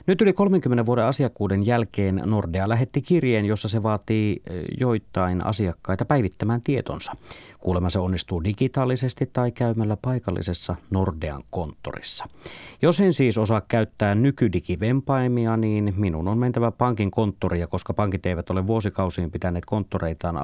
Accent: native